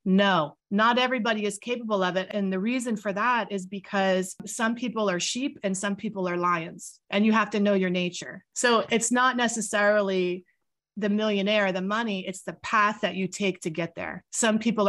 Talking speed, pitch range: 200 wpm, 180-210 Hz